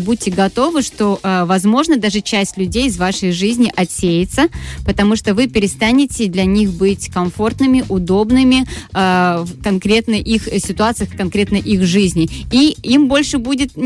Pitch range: 195-250 Hz